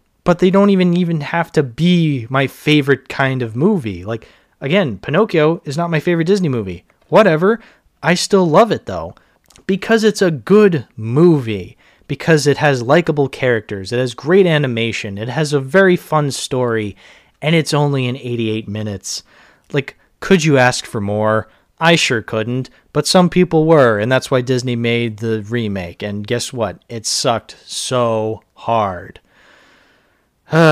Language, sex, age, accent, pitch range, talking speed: English, male, 30-49, American, 110-155 Hz, 160 wpm